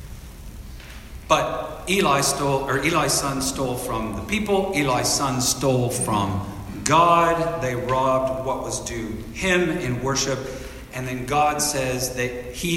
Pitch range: 105-150 Hz